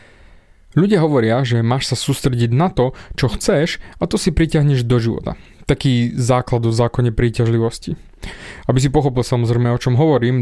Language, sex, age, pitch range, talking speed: Slovak, male, 20-39, 120-155 Hz, 160 wpm